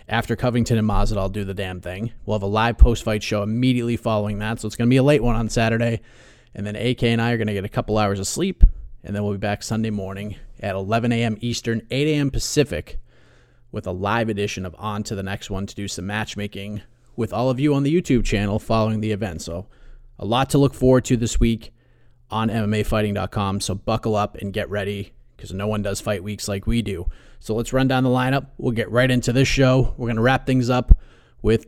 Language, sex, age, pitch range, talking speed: English, male, 30-49, 105-125 Hz, 240 wpm